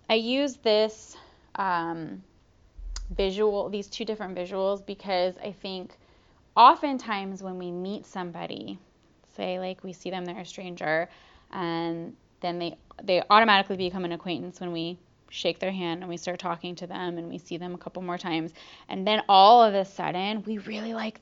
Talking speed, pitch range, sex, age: 175 wpm, 185-260 Hz, female, 20-39